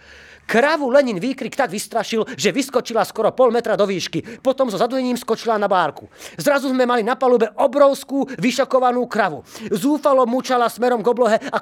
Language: Slovak